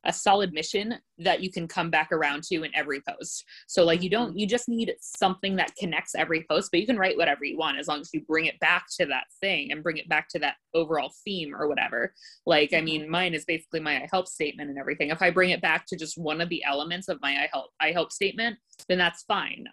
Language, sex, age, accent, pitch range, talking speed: English, female, 20-39, American, 150-190 Hz, 260 wpm